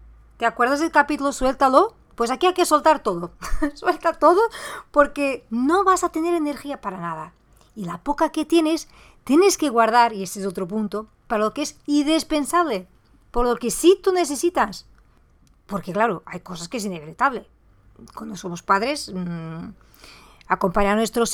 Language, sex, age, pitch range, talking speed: Spanish, female, 40-59, 205-300 Hz, 165 wpm